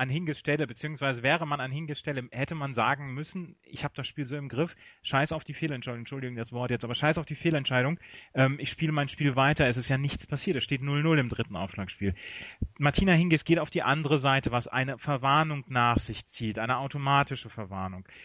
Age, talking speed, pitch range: 30-49, 210 wpm, 125-155 Hz